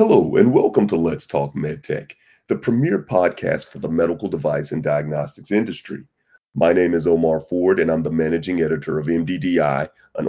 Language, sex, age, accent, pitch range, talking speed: English, male, 30-49, American, 80-115 Hz, 175 wpm